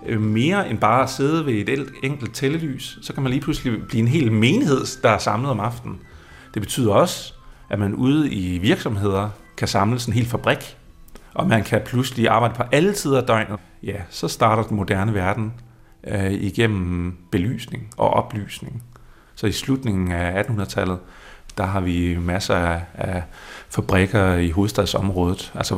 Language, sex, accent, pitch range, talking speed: Danish, male, native, 95-120 Hz, 170 wpm